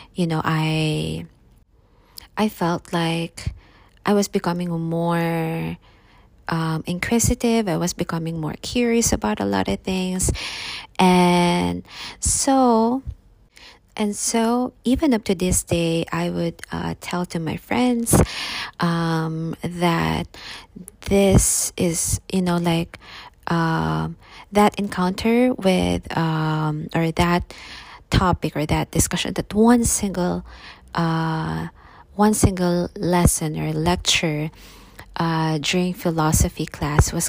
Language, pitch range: English, 150-185 Hz